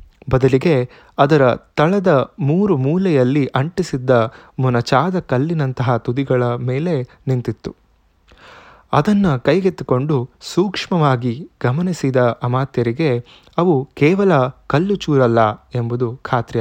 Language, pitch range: Kannada, 125-160 Hz